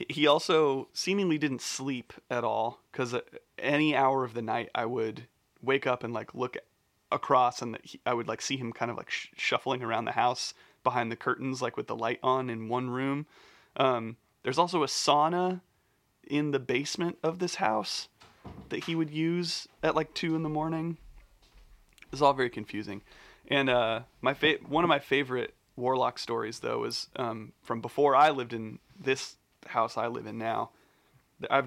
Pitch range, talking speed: 120-150 Hz, 180 wpm